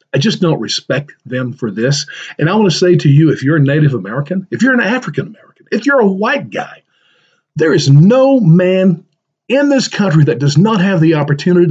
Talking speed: 215 wpm